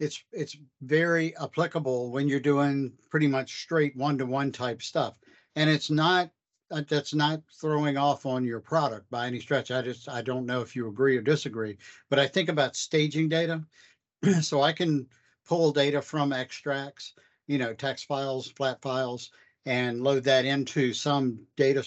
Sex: male